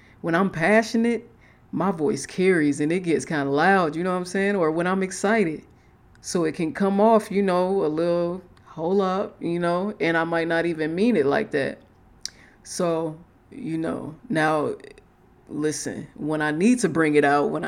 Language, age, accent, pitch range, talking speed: English, 20-39, American, 155-190 Hz, 190 wpm